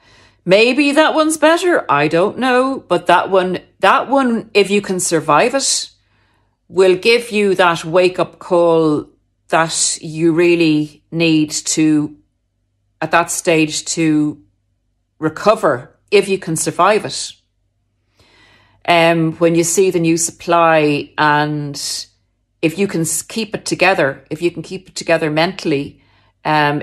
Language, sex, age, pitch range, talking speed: English, female, 40-59, 150-205 Hz, 135 wpm